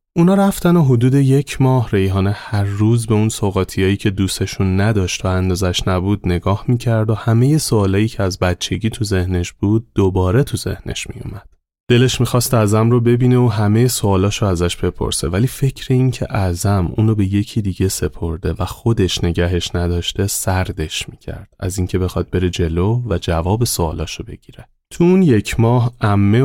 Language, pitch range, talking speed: Persian, 90-120 Hz, 165 wpm